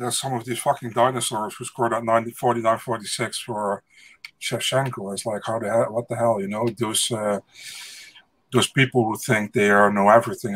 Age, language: 50-69, English